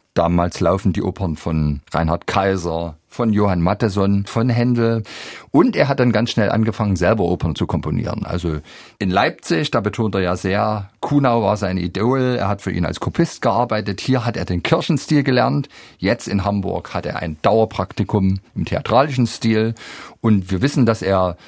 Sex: male